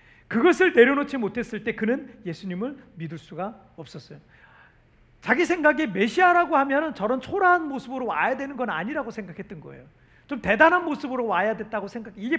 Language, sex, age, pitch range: Korean, male, 40-59, 190-270 Hz